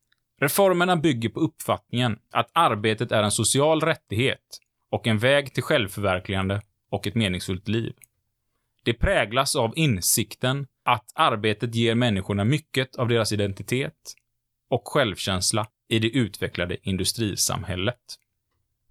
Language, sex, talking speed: Swedish, male, 115 wpm